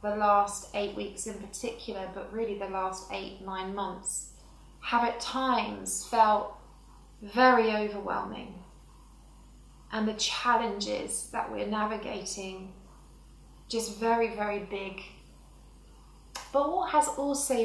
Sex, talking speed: female, 110 wpm